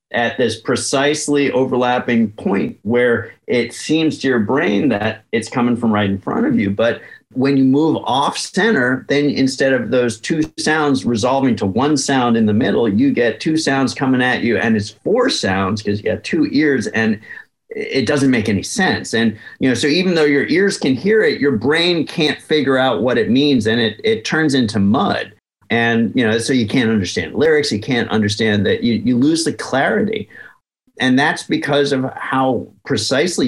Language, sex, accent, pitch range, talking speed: English, male, American, 115-155 Hz, 195 wpm